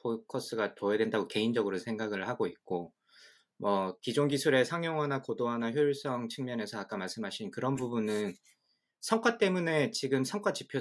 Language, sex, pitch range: Korean, male, 105-145 Hz